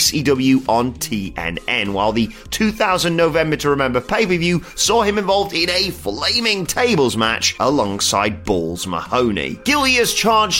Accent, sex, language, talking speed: British, male, English, 130 wpm